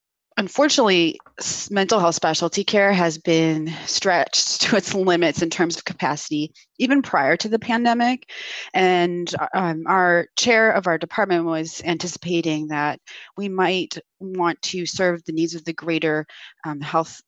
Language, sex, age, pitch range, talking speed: English, female, 30-49, 160-190 Hz, 145 wpm